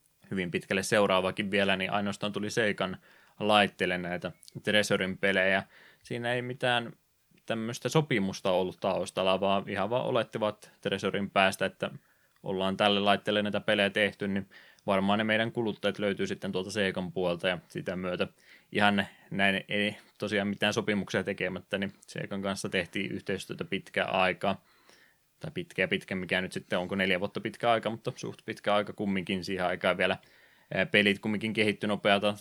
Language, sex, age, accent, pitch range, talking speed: Finnish, male, 20-39, native, 95-105 Hz, 150 wpm